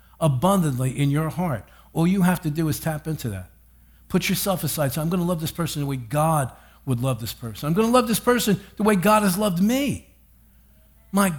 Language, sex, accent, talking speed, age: English, male, American, 215 wpm, 50-69